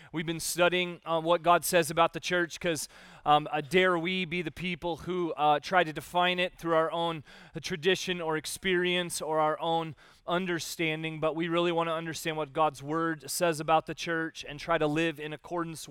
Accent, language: American, English